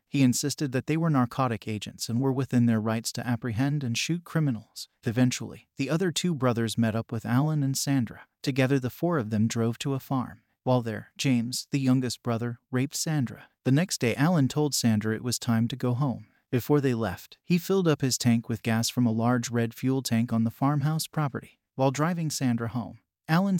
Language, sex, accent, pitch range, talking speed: English, male, American, 115-140 Hz, 210 wpm